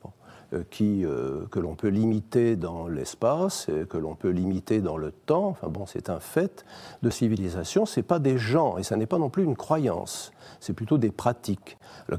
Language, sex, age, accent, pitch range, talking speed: French, male, 50-69, French, 95-130 Hz, 200 wpm